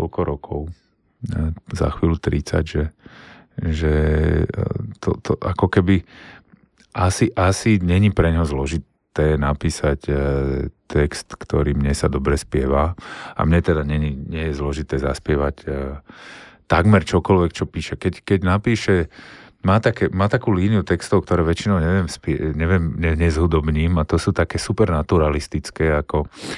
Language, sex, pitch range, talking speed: Slovak, male, 75-100 Hz, 135 wpm